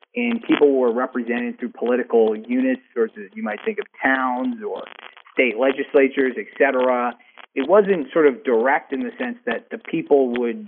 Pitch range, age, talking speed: 115-170 Hz, 30-49, 170 wpm